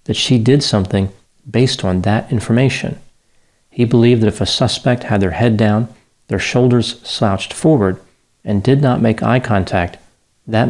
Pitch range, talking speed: 100-120 Hz, 165 wpm